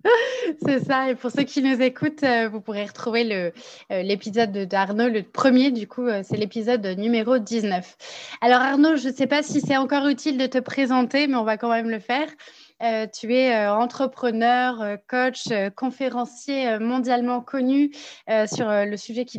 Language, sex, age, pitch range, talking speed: French, female, 20-39, 215-260 Hz, 185 wpm